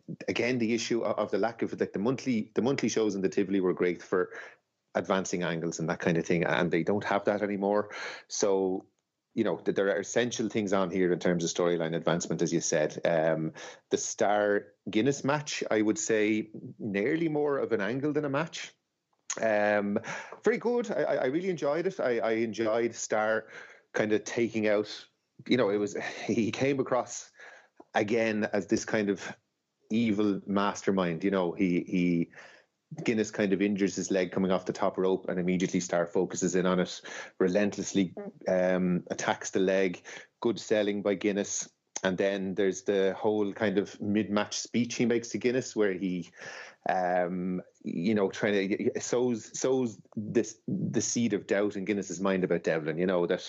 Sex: male